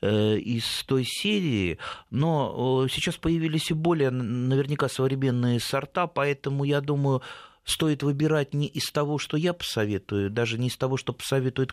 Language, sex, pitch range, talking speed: Russian, male, 105-135 Hz, 145 wpm